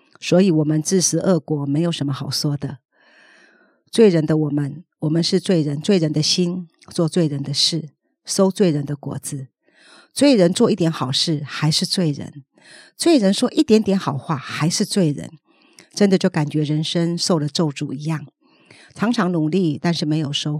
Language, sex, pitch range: Chinese, female, 150-180 Hz